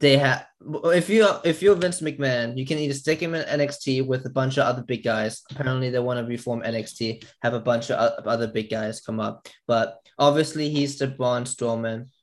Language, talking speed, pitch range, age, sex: English, 215 wpm, 115-140 Hz, 20-39, male